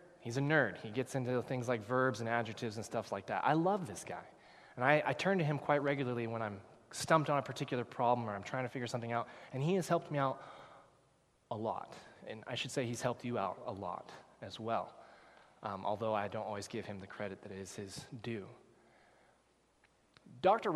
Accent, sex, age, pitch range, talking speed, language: American, male, 20-39, 115-150 Hz, 215 wpm, English